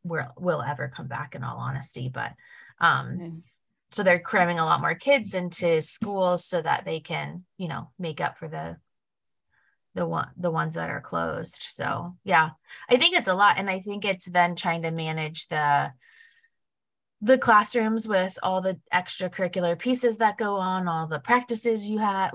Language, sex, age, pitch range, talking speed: English, female, 20-39, 150-190 Hz, 180 wpm